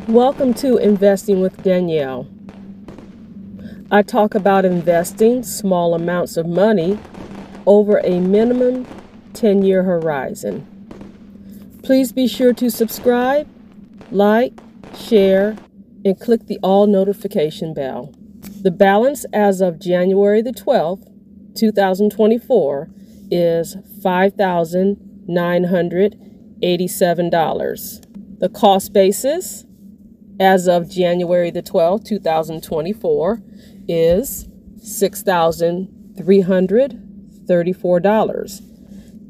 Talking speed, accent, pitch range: 75 wpm, American, 185-215 Hz